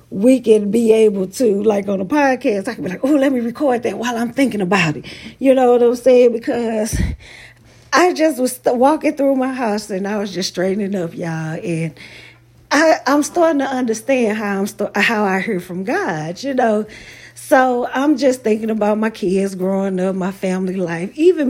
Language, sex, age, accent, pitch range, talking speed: English, female, 40-59, American, 190-275 Hz, 205 wpm